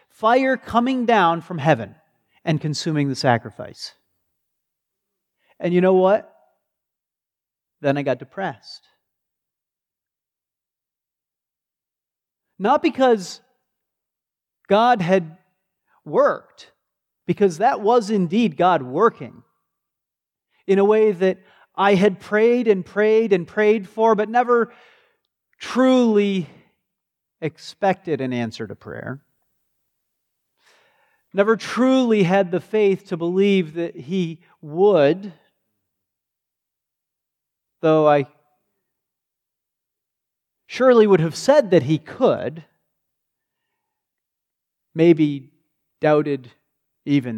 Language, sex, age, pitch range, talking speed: English, male, 40-59, 155-215 Hz, 90 wpm